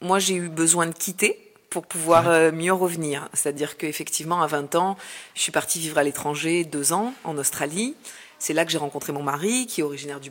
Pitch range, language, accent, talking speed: 150-175 Hz, French, French, 215 wpm